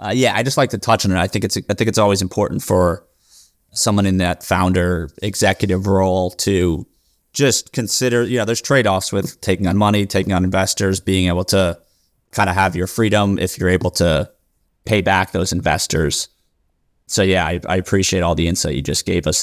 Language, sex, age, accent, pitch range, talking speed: English, male, 30-49, American, 95-110 Hz, 205 wpm